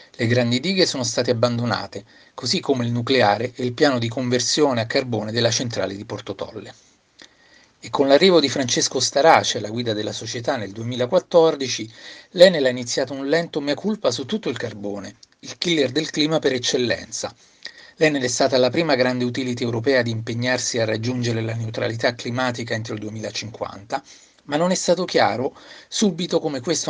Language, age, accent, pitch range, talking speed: Italian, 40-59, native, 120-160 Hz, 170 wpm